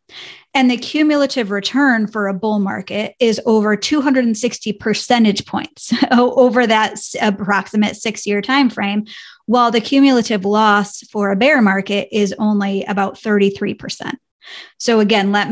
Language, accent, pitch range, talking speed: English, American, 205-245 Hz, 130 wpm